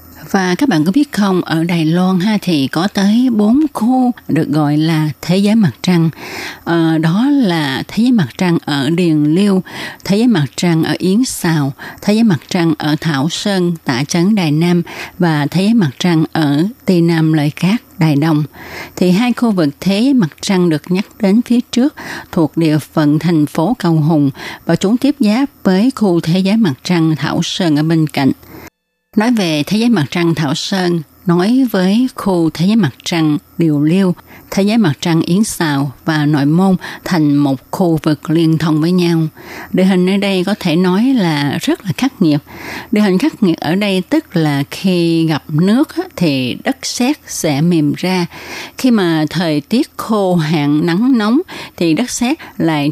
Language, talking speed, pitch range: Vietnamese, 195 wpm, 155-215 Hz